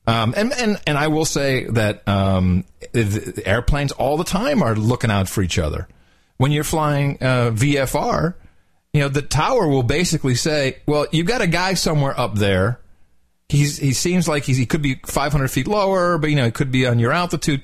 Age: 40-59